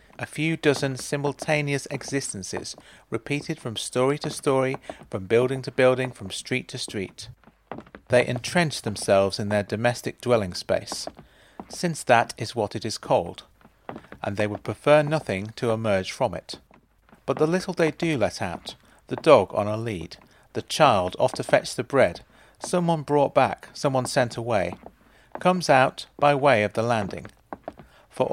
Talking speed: 160 wpm